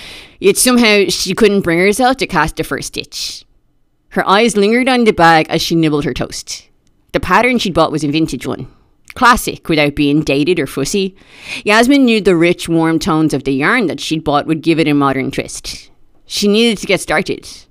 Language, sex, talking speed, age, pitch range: English, female, 200 wpm, 30-49, 150-205 Hz